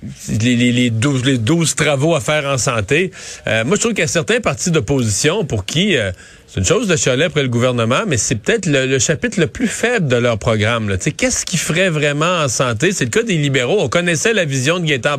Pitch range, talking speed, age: 125-170 Hz, 255 wpm, 40-59